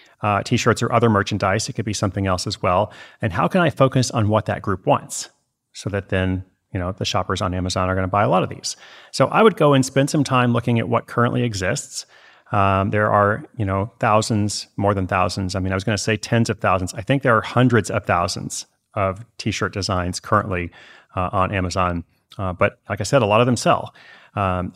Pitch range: 100-125 Hz